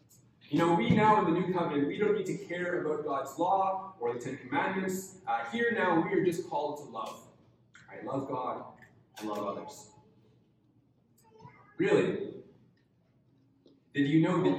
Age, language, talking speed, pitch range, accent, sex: 30-49, English, 165 wpm, 140-175 Hz, American, male